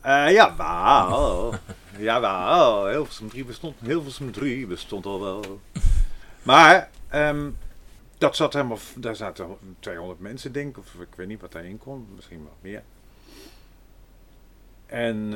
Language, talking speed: Dutch, 135 wpm